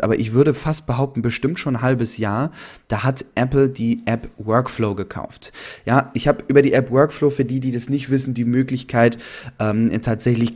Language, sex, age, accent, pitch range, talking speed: German, male, 20-39, German, 115-135 Hz, 195 wpm